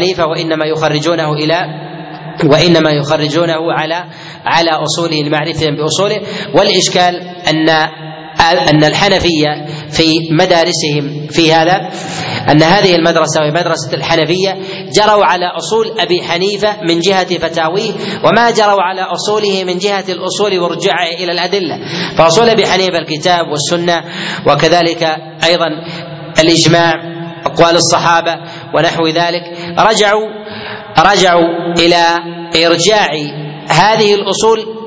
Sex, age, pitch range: male, 30-49, 160-190 Hz